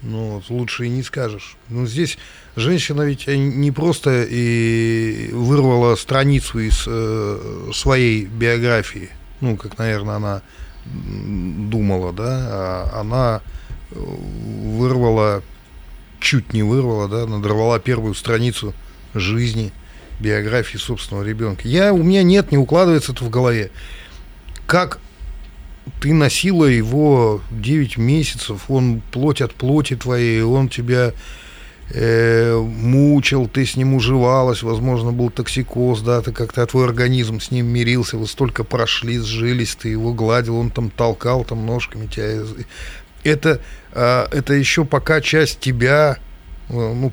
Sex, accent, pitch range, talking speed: male, native, 110-130 Hz, 120 wpm